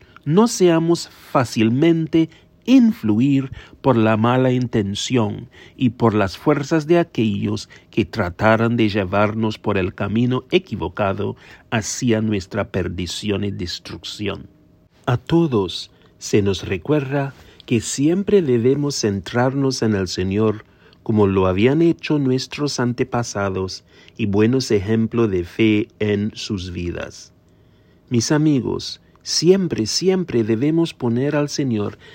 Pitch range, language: 105-145 Hz, English